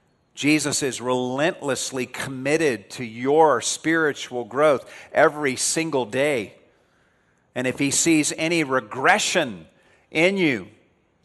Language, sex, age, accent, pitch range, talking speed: English, male, 50-69, American, 115-140 Hz, 100 wpm